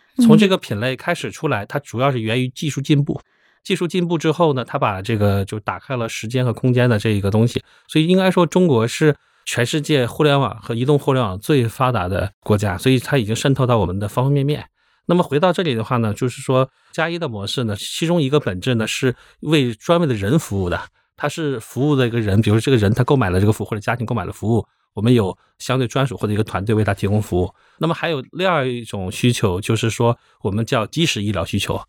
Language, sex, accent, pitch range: Chinese, male, native, 105-140 Hz